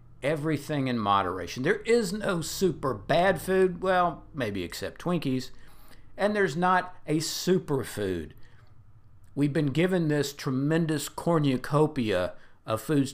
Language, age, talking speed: English, 50-69, 125 wpm